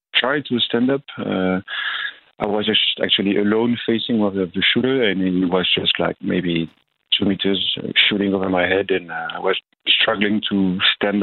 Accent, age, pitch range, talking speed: French, 40-59, 95-110 Hz, 175 wpm